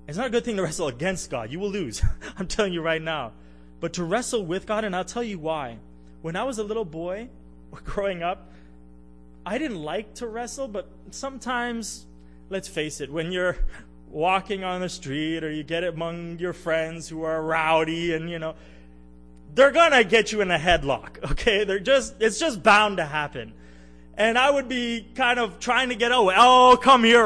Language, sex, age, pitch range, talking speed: English, male, 20-39, 155-245 Hz, 200 wpm